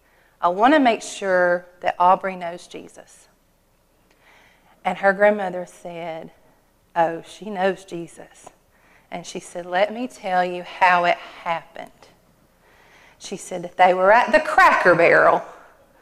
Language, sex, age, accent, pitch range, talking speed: English, female, 40-59, American, 170-215 Hz, 135 wpm